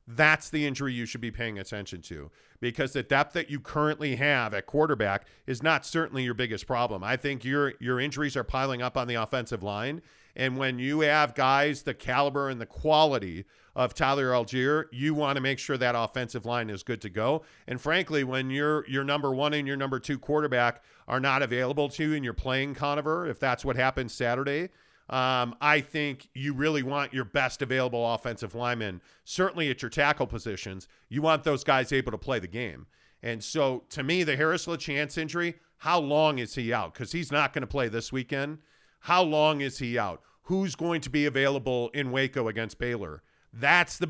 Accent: American